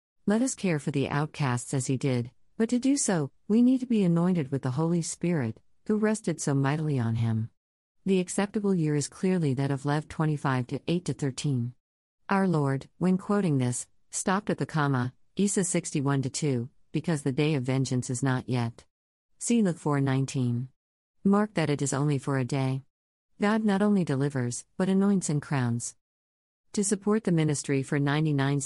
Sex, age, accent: female, 50-69, American